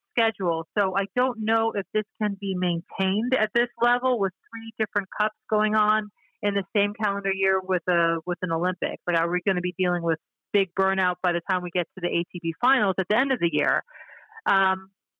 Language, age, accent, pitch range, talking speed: English, 40-59, American, 180-230 Hz, 215 wpm